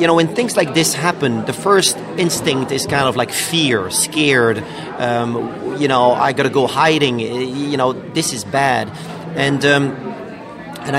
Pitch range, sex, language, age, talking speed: 130-155 Hz, male, English, 40-59, 175 wpm